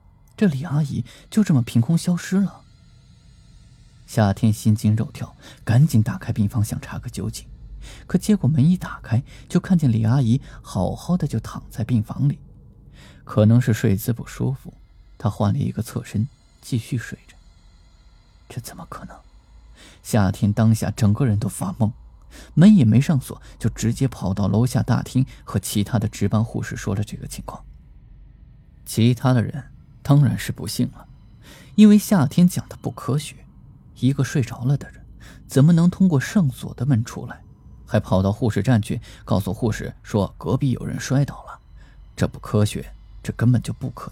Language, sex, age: Chinese, male, 20-39